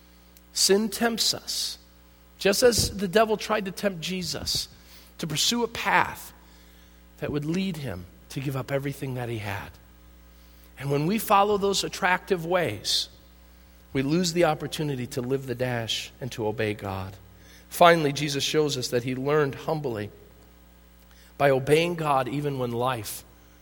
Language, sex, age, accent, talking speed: English, male, 40-59, American, 150 wpm